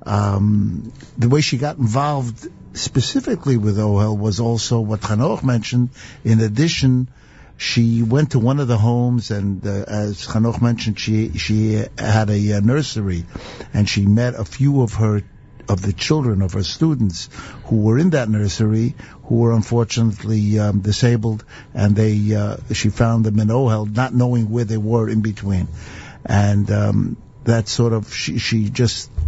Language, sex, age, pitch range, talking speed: English, male, 60-79, 105-120 Hz, 165 wpm